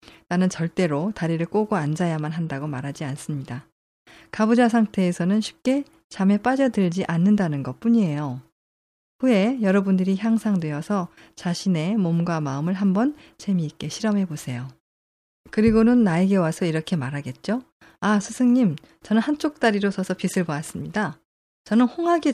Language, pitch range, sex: Korean, 155-215 Hz, female